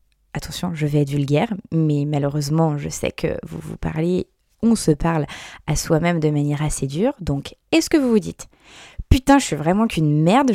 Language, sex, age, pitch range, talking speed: French, female, 20-39, 150-225 Hz, 195 wpm